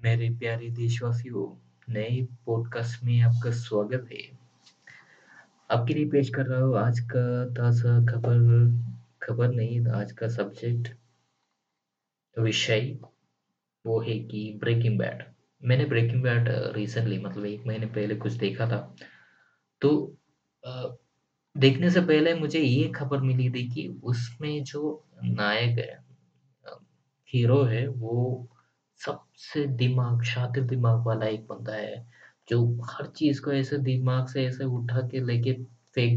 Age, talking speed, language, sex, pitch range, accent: 20-39, 130 wpm, Hindi, male, 115-135 Hz, native